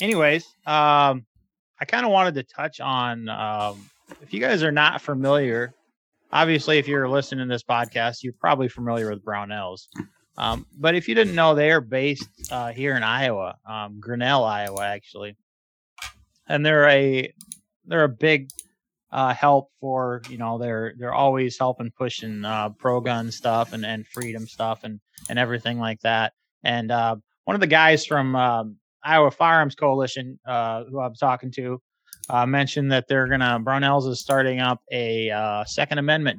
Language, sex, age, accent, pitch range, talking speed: English, male, 30-49, American, 120-150 Hz, 170 wpm